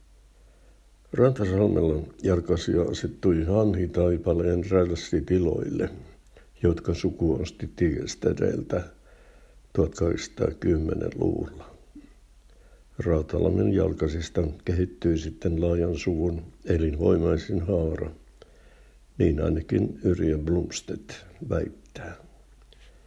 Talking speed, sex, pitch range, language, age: 60 wpm, male, 80-90 Hz, Finnish, 60-79